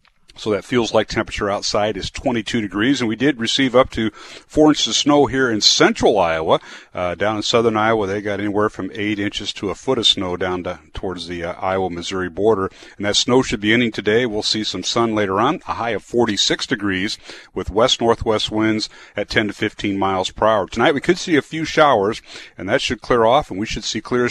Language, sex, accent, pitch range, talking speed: English, male, American, 100-120 Hz, 225 wpm